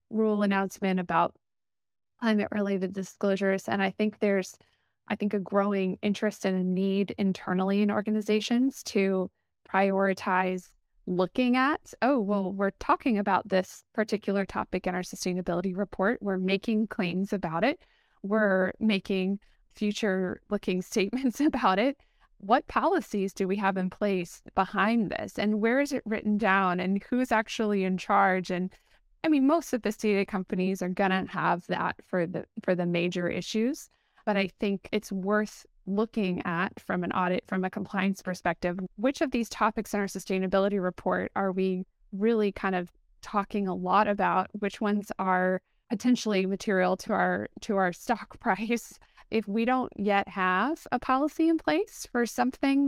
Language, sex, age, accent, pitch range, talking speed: English, female, 20-39, American, 190-220 Hz, 155 wpm